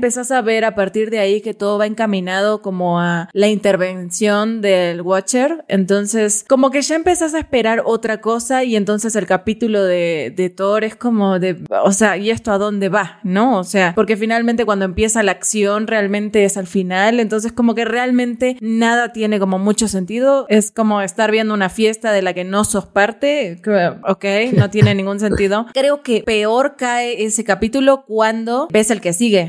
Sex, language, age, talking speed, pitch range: female, Spanish, 20-39, 190 wpm, 195-230 Hz